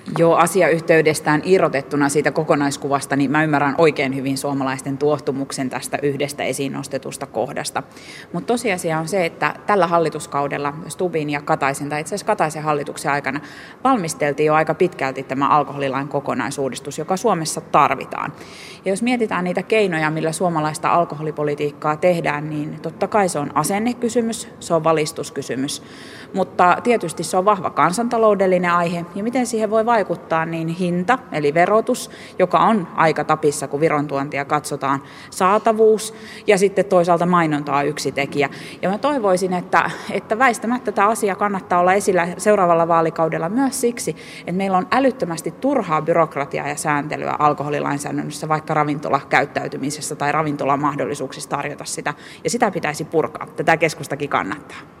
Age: 30-49